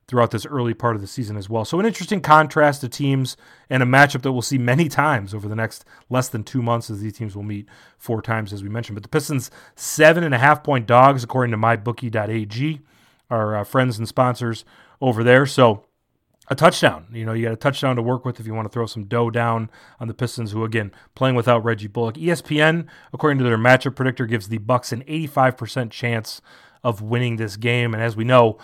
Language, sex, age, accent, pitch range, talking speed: English, male, 30-49, American, 115-135 Hz, 220 wpm